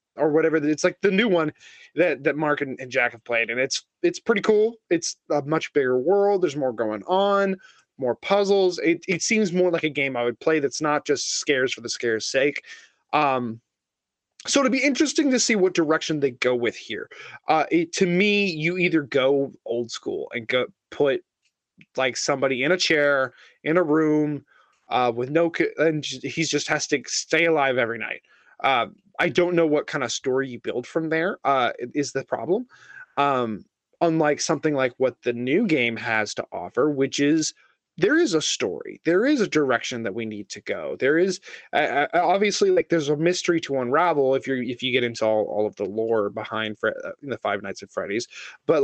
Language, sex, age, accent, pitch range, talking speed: English, male, 20-39, American, 130-180 Hz, 205 wpm